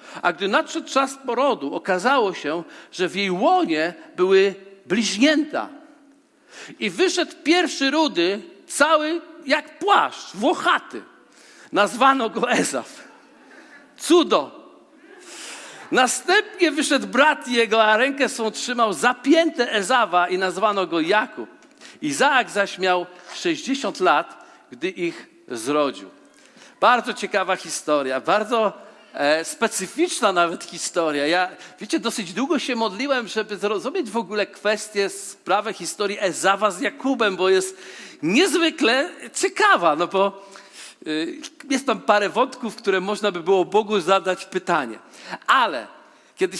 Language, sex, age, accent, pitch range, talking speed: Polish, male, 50-69, native, 195-300 Hz, 115 wpm